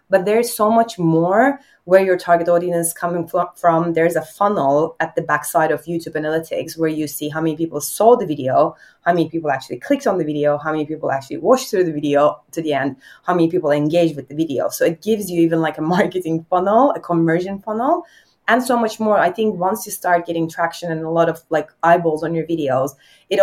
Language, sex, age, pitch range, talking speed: English, female, 20-39, 155-195 Hz, 225 wpm